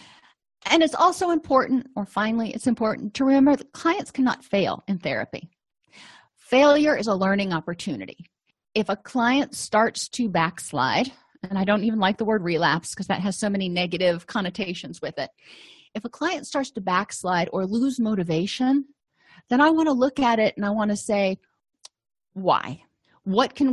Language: English